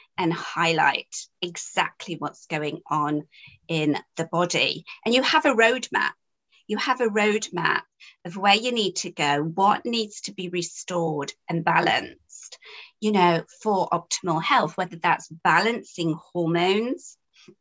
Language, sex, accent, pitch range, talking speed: English, female, British, 165-210 Hz, 135 wpm